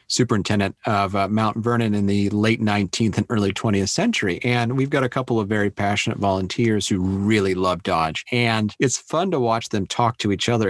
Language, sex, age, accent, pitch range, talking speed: English, male, 40-59, American, 95-115 Hz, 200 wpm